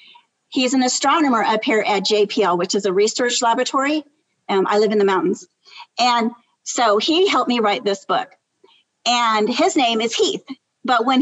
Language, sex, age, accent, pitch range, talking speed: English, female, 40-59, American, 225-290 Hz, 175 wpm